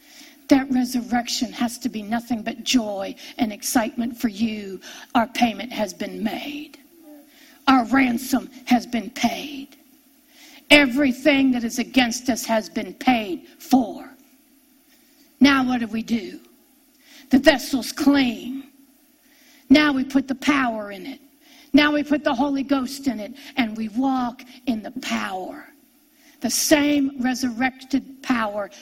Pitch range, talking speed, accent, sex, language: 245-285 Hz, 135 wpm, American, female, English